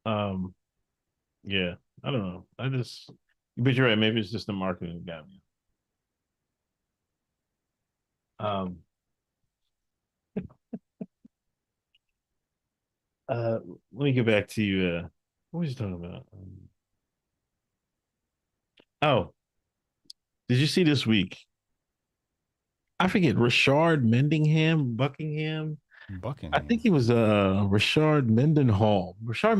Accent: American